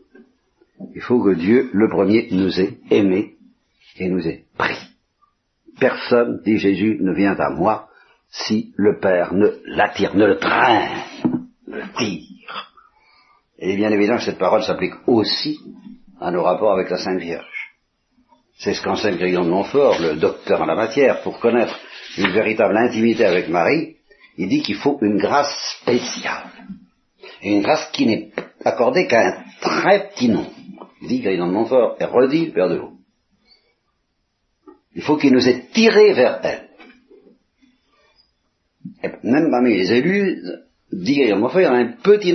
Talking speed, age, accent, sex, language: 155 wpm, 60-79, French, male, Italian